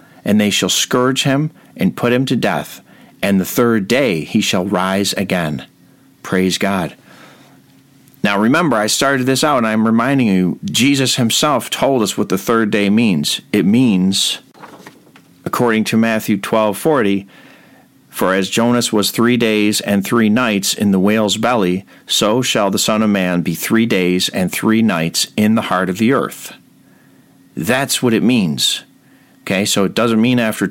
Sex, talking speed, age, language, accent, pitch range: male, 170 wpm, 50-69, English, American, 95-120 Hz